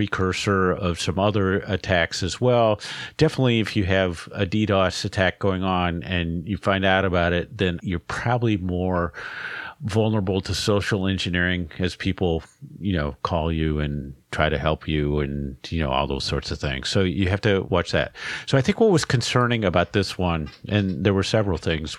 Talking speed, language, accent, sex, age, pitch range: 190 wpm, English, American, male, 50-69, 90-115 Hz